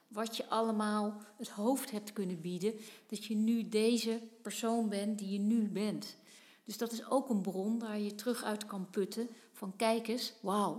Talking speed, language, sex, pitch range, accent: 190 wpm, Dutch, female, 195-230 Hz, Dutch